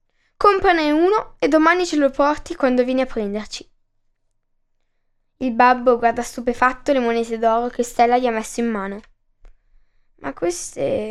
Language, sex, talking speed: Italian, female, 145 wpm